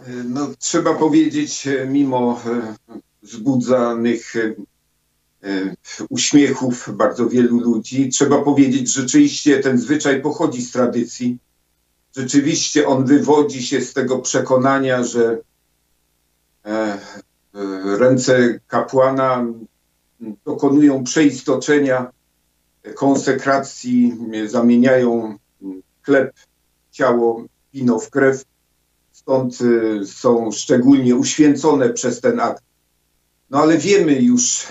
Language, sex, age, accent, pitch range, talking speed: Polish, male, 50-69, native, 110-140 Hz, 85 wpm